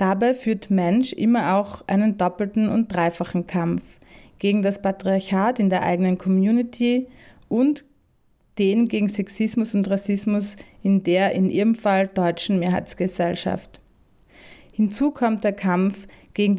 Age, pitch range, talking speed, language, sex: 20-39, 185-210 Hz, 125 wpm, German, female